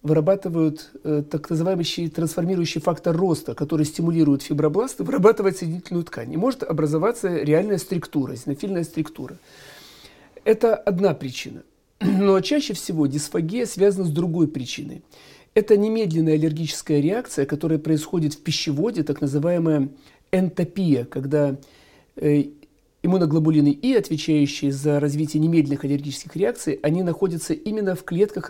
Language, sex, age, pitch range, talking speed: Russian, male, 40-59, 150-190 Hz, 120 wpm